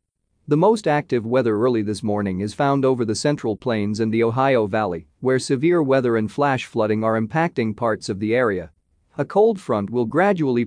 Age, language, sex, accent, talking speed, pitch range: 40-59, English, male, American, 190 wpm, 105-140 Hz